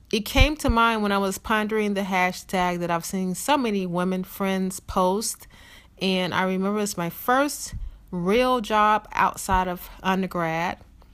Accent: American